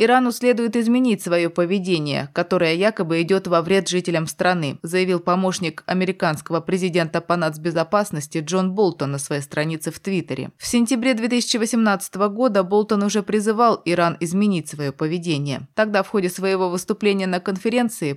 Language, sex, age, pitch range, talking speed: Russian, female, 20-39, 170-215 Hz, 140 wpm